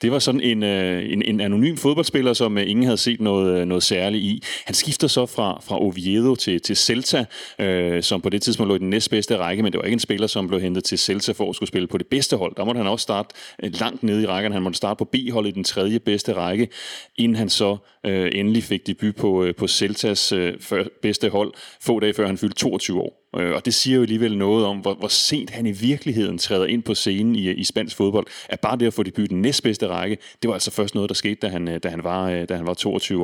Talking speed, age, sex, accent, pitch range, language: 255 wpm, 30-49, male, native, 95-115 Hz, Danish